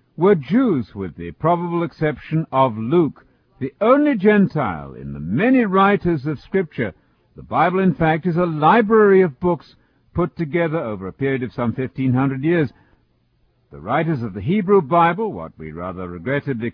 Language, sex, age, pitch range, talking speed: English, male, 60-79, 125-170 Hz, 165 wpm